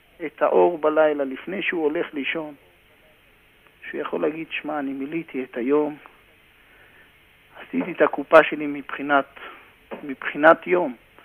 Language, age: Hebrew, 50-69